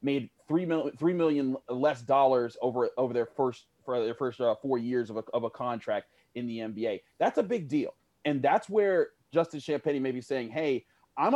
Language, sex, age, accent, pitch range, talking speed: English, male, 30-49, American, 125-160 Hz, 205 wpm